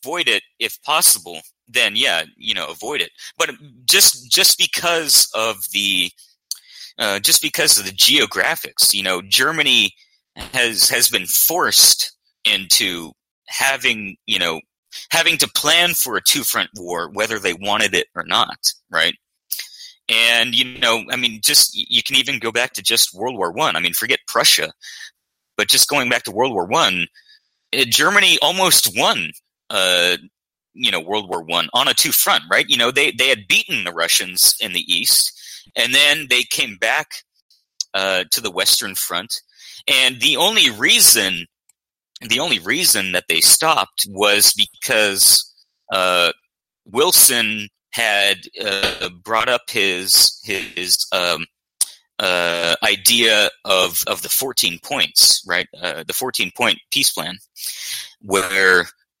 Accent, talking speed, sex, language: American, 150 wpm, male, English